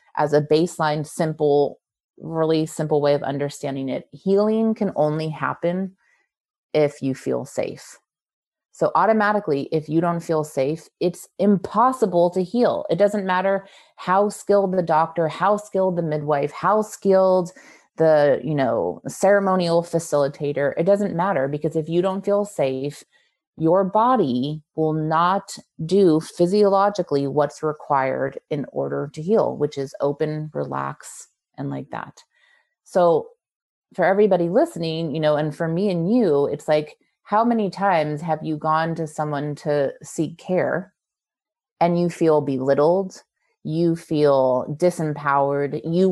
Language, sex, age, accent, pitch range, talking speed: English, female, 30-49, American, 150-195 Hz, 140 wpm